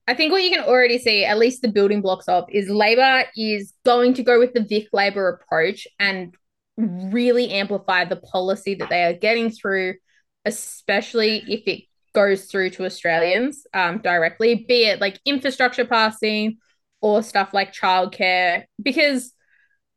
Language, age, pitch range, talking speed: English, 20-39, 190-245 Hz, 160 wpm